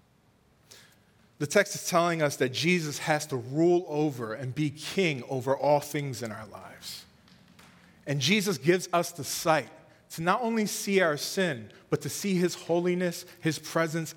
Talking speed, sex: 165 wpm, male